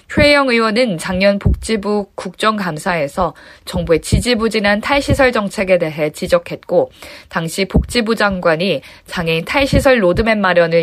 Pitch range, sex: 180-245 Hz, female